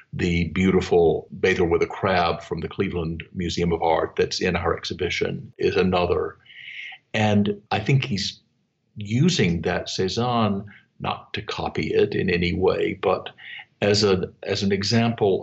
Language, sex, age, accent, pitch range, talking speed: English, male, 50-69, American, 85-110 Hz, 145 wpm